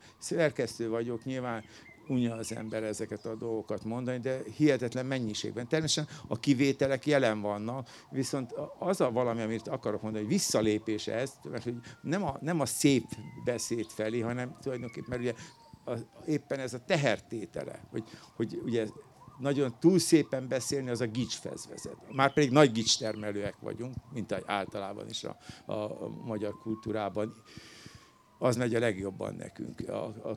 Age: 60-79